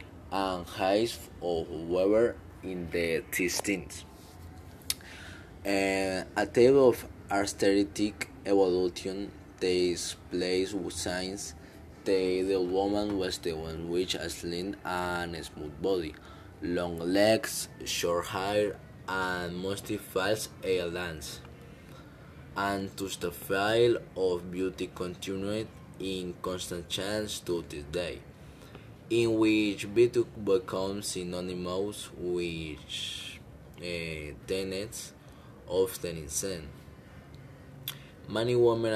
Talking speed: 100 wpm